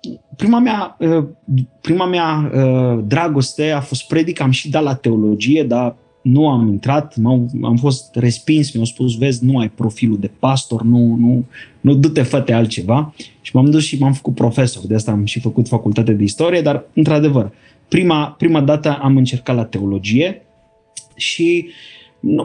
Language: Romanian